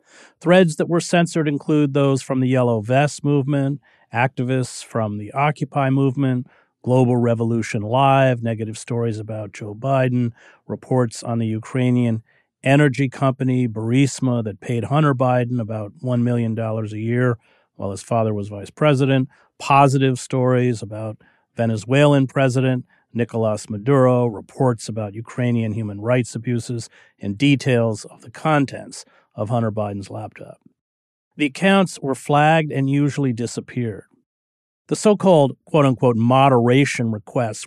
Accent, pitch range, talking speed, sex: American, 115-140 Hz, 125 wpm, male